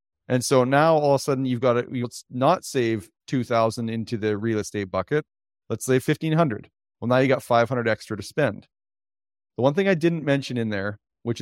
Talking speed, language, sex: 215 wpm, English, male